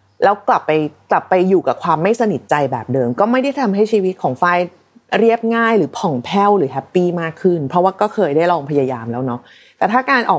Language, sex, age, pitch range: Thai, female, 30-49, 165-250 Hz